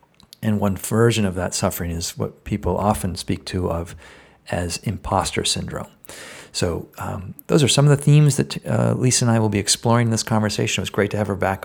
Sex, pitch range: male, 95-110 Hz